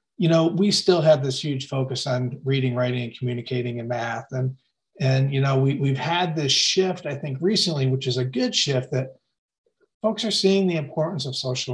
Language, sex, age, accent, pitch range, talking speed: English, male, 40-59, American, 125-160 Hz, 205 wpm